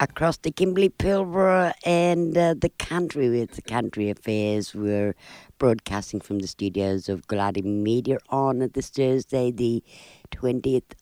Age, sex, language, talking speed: 60-79, female, English, 140 wpm